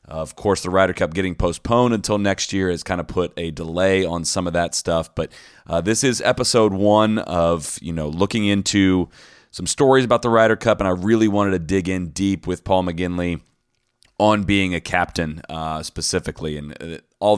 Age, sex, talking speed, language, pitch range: 30-49, male, 200 wpm, English, 85-105 Hz